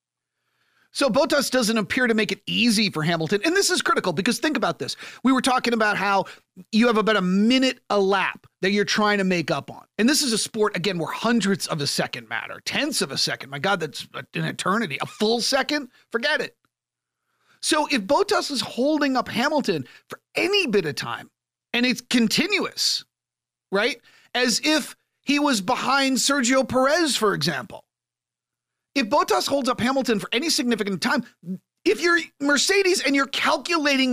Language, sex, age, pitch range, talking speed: English, male, 40-59, 205-270 Hz, 180 wpm